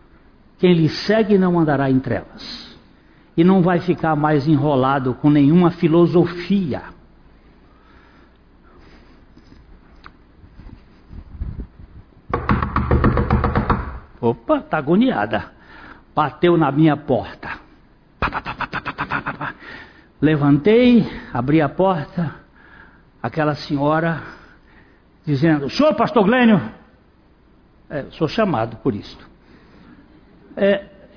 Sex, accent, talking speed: male, Brazilian, 75 wpm